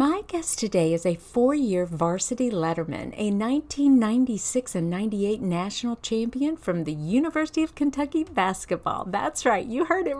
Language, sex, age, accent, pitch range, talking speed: English, female, 50-69, American, 190-285 Hz, 145 wpm